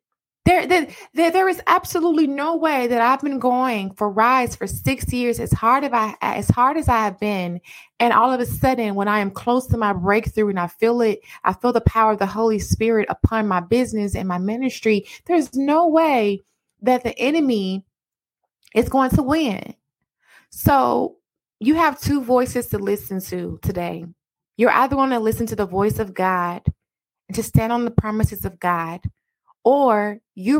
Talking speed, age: 185 wpm, 20-39